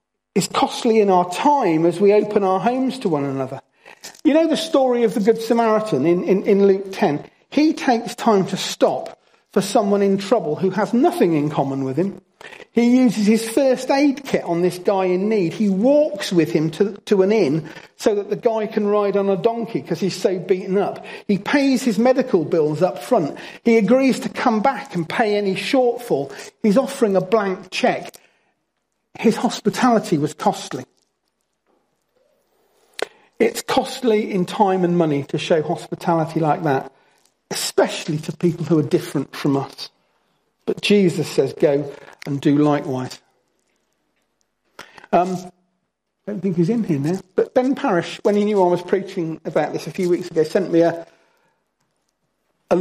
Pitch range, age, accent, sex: 175-235 Hz, 40-59, British, male